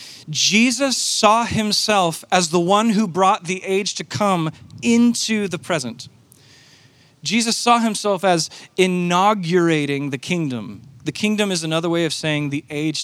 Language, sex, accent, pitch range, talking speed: English, male, American, 135-205 Hz, 145 wpm